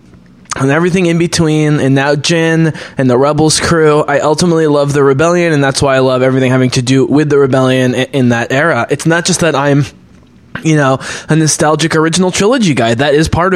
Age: 20-39